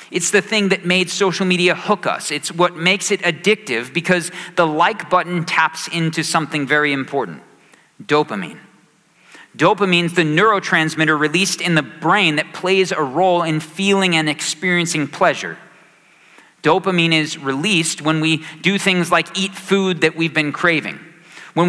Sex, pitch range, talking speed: male, 155-185 Hz, 150 wpm